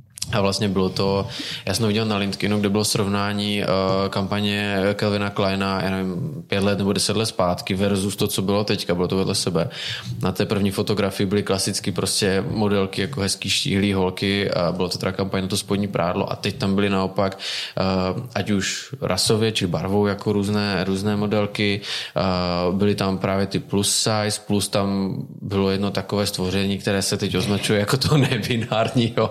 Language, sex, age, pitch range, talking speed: Czech, male, 20-39, 100-110 Hz, 185 wpm